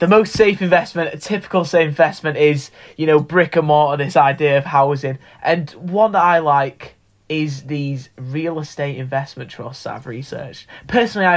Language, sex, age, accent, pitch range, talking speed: English, male, 20-39, British, 135-170 Hz, 175 wpm